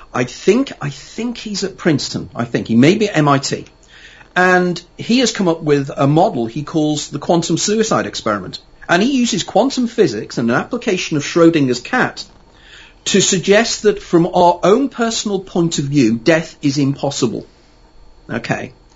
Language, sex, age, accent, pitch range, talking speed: English, male, 40-59, British, 140-195 Hz, 170 wpm